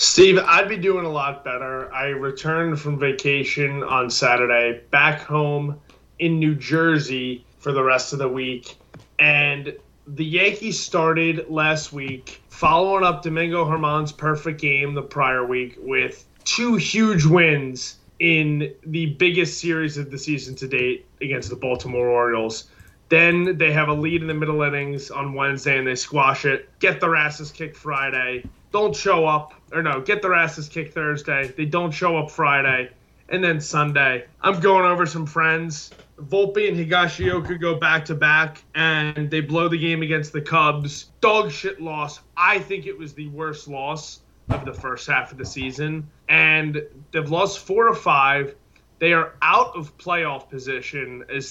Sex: male